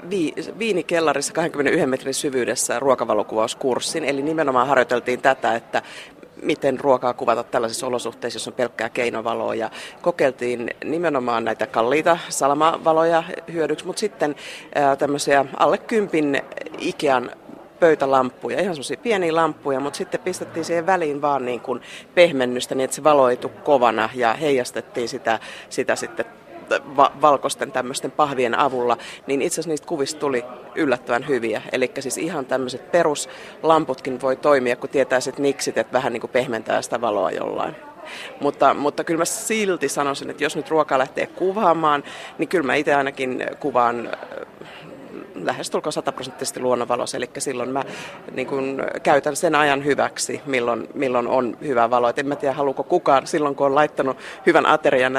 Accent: native